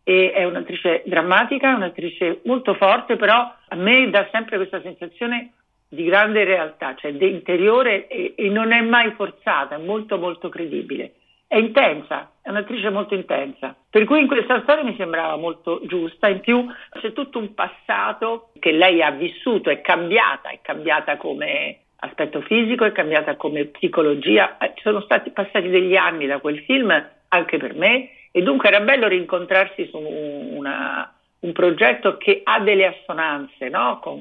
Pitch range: 175-235 Hz